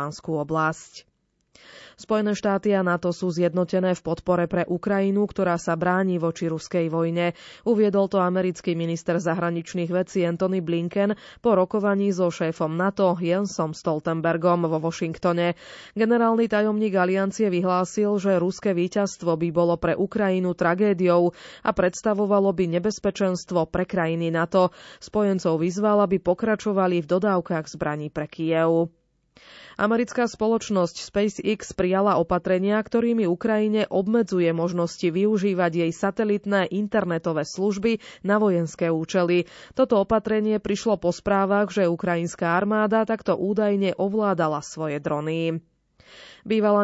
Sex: female